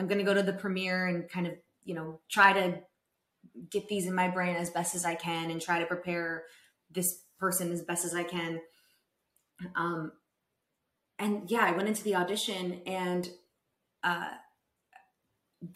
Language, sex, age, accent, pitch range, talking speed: English, female, 20-39, American, 170-195 Hz, 170 wpm